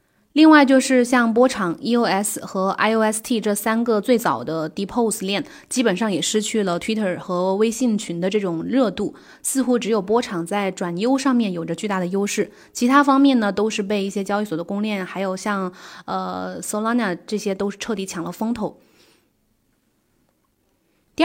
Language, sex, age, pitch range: Chinese, female, 20-39, 195-240 Hz